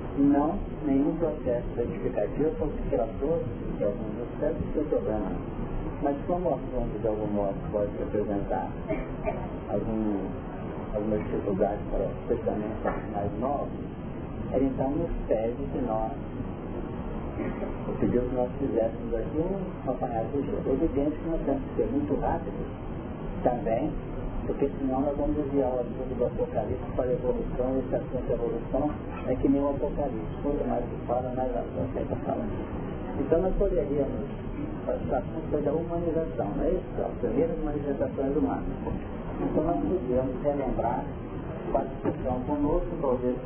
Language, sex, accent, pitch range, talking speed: Portuguese, male, Brazilian, 125-145 Hz, 165 wpm